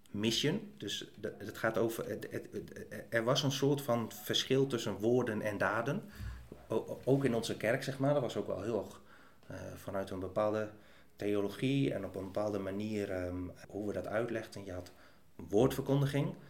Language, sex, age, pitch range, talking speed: Dutch, male, 30-49, 95-115 Hz, 180 wpm